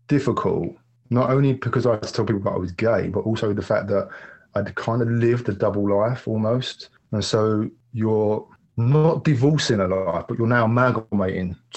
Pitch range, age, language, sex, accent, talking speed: 95-120 Hz, 30-49, English, male, British, 190 wpm